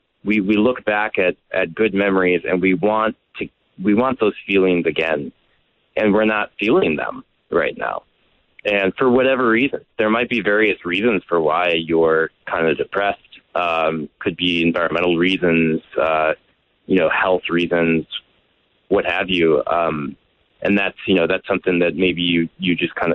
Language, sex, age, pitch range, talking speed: English, male, 20-39, 85-105 Hz, 170 wpm